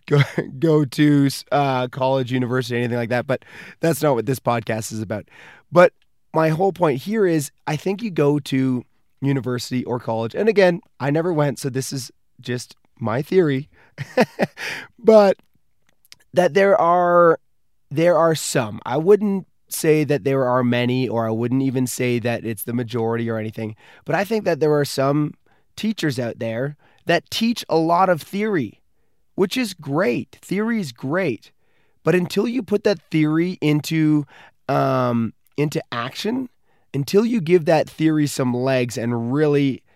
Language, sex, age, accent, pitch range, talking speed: English, male, 20-39, American, 125-170 Hz, 160 wpm